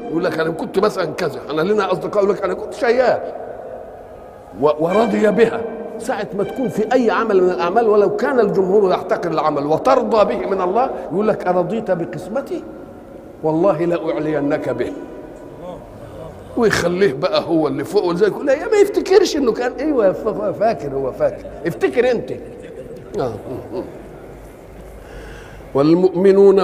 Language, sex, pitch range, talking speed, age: Arabic, male, 160-220 Hz, 130 wpm, 50-69